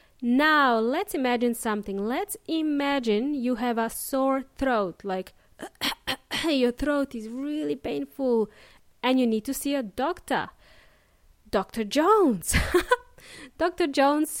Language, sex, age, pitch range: English, female, 20-39, 225-295 Hz